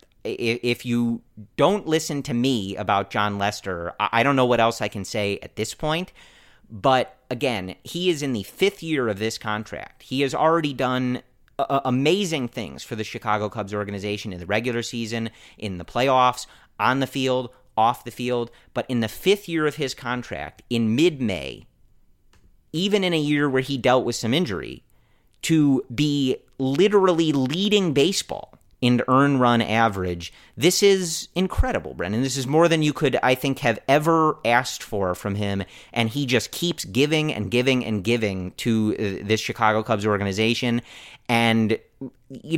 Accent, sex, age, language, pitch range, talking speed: American, male, 30-49, English, 110-140 Hz, 165 wpm